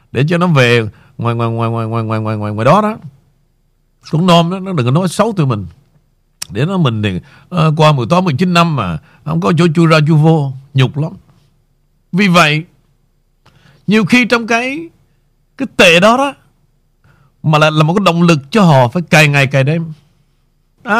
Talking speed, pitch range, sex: 205 wpm, 140-220 Hz, male